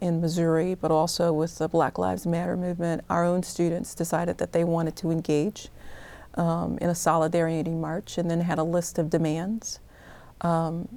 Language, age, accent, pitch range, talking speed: English, 40-59, American, 165-195 Hz, 175 wpm